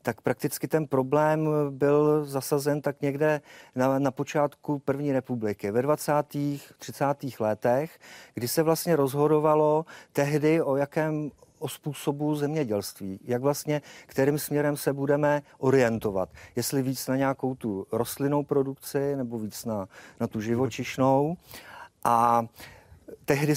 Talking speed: 125 wpm